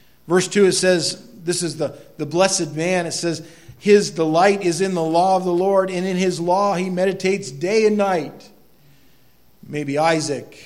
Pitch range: 140-180 Hz